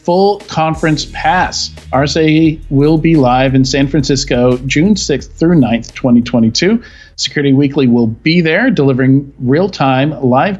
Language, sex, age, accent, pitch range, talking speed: English, male, 40-59, American, 125-155 Hz, 130 wpm